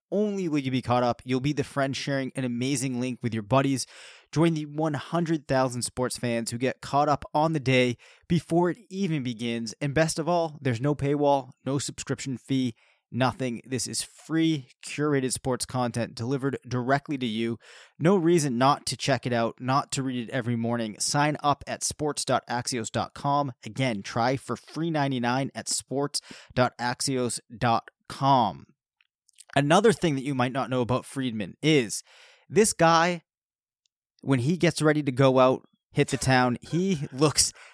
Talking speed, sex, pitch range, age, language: 160 wpm, male, 125-150 Hz, 20-39, English